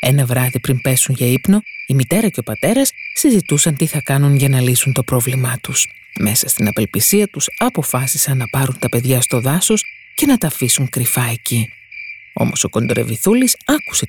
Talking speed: 180 wpm